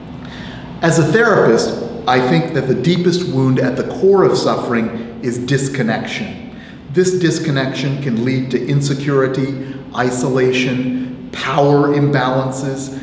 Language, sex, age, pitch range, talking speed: English, male, 40-59, 125-170 Hz, 115 wpm